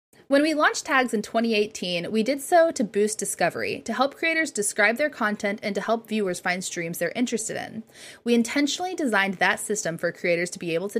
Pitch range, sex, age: 190-245 Hz, female, 20-39